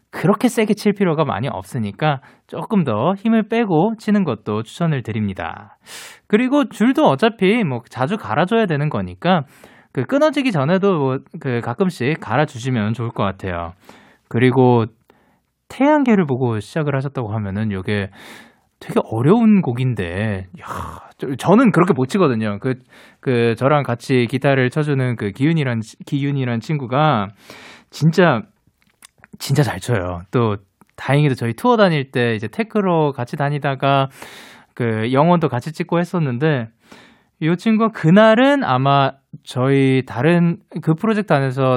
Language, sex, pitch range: Korean, male, 120-170 Hz